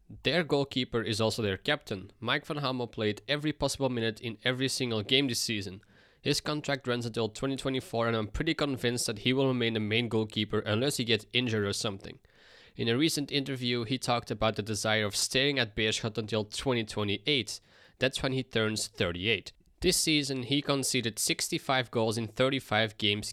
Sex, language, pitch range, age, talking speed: male, English, 110-135 Hz, 20-39, 180 wpm